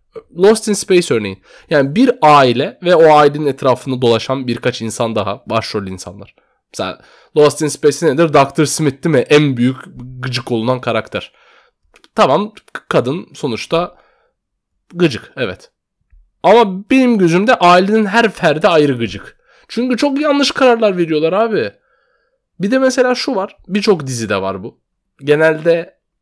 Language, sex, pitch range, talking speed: Turkish, male, 130-190 Hz, 135 wpm